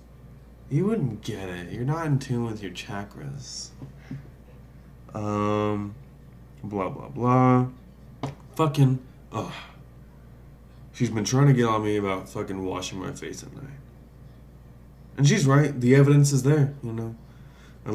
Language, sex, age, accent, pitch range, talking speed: English, male, 20-39, American, 95-140 Hz, 135 wpm